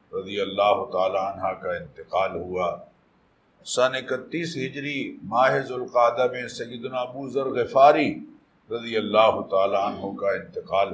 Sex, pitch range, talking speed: male, 120-160 Hz, 115 wpm